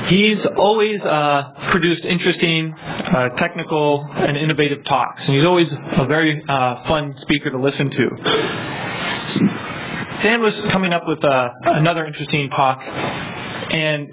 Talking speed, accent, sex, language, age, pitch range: 130 wpm, American, male, English, 30-49, 140-170 Hz